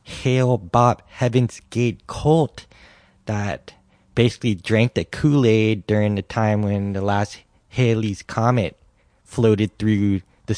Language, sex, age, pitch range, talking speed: English, male, 20-39, 95-115 Hz, 120 wpm